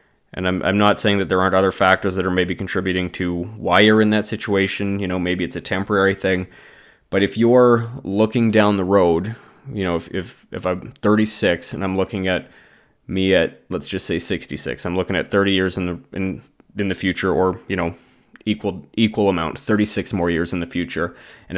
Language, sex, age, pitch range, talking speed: English, male, 20-39, 90-105 Hz, 210 wpm